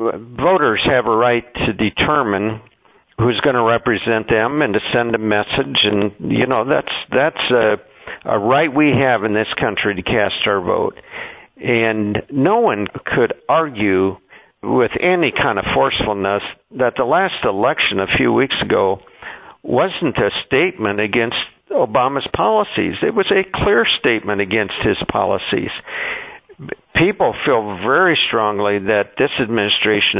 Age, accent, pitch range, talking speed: 50-69, American, 105-135 Hz, 145 wpm